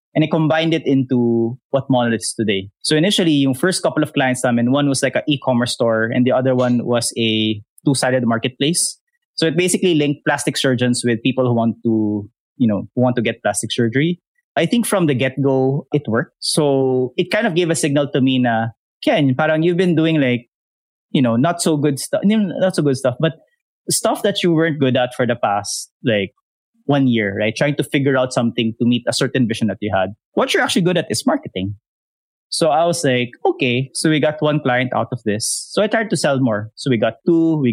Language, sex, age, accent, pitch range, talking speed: English, male, 20-39, Filipino, 120-155 Hz, 225 wpm